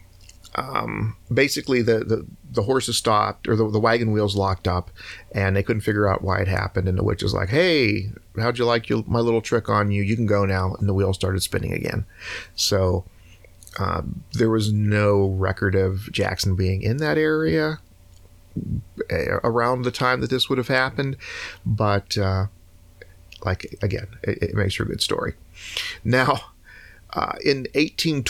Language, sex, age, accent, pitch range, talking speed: English, male, 40-59, American, 95-120 Hz, 170 wpm